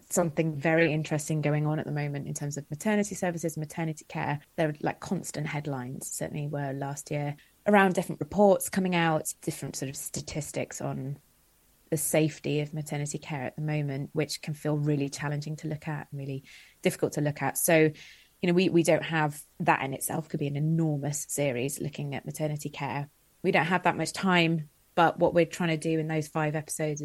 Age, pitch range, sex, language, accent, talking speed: 20-39, 145-170 Hz, female, English, British, 200 wpm